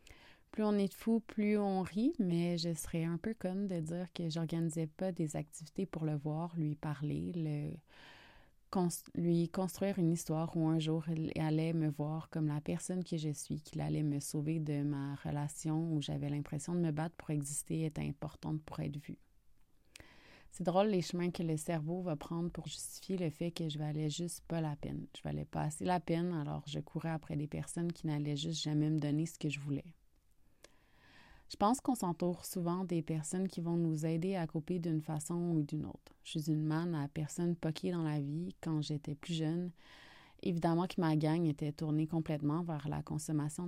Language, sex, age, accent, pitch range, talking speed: French, female, 30-49, Canadian, 150-175 Hz, 200 wpm